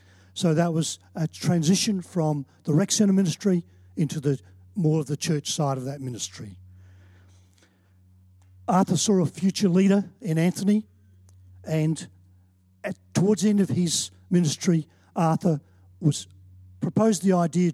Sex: male